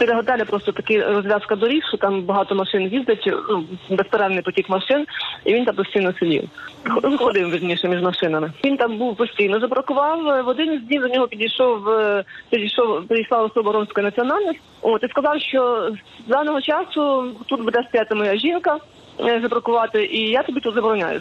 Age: 20-39